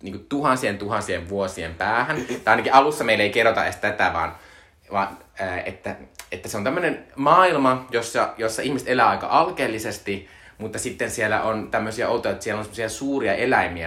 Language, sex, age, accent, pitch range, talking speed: Finnish, male, 20-39, native, 90-110 Hz, 165 wpm